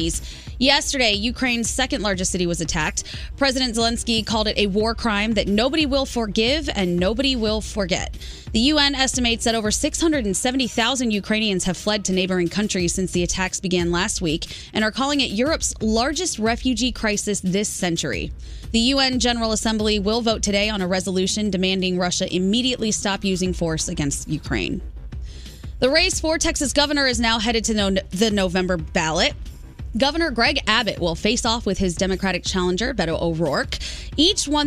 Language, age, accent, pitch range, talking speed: English, 20-39, American, 190-250 Hz, 165 wpm